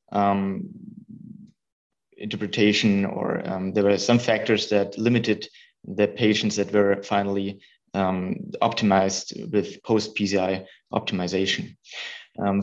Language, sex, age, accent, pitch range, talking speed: English, male, 30-49, German, 105-125 Hz, 100 wpm